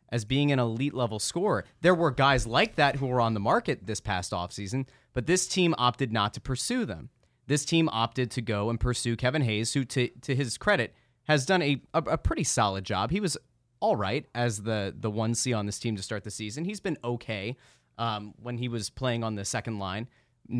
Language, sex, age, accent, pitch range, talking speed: English, male, 30-49, American, 110-130 Hz, 220 wpm